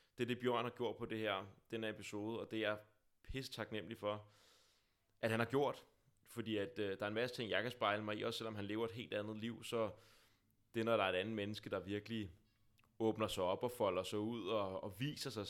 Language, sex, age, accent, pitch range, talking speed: Danish, male, 20-39, native, 100-115 Hz, 250 wpm